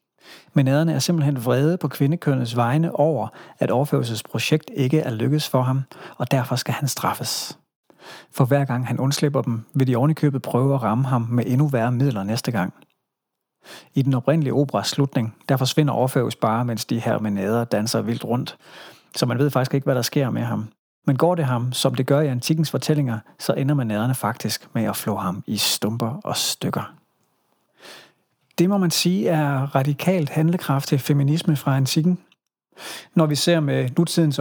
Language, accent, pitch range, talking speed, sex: Danish, native, 125-150 Hz, 180 wpm, male